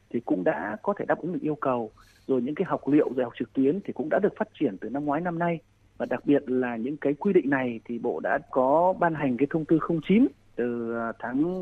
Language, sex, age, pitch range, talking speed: Vietnamese, male, 30-49, 125-175 Hz, 265 wpm